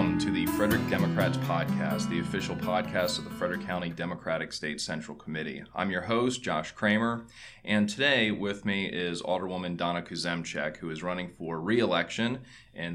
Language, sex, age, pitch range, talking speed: English, male, 30-49, 85-105 Hz, 165 wpm